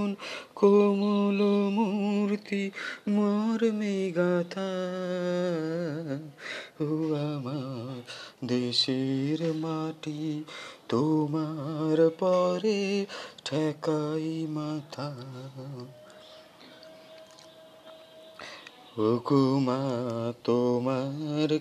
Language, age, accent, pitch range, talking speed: Bengali, 30-49, native, 150-195 Hz, 40 wpm